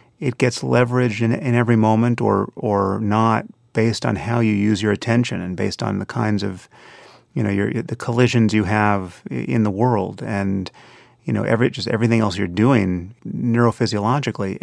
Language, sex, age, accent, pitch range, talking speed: English, male, 30-49, American, 100-120 Hz, 175 wpm